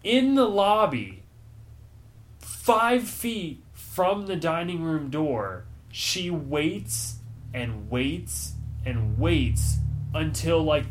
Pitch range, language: 115-165 Hz, English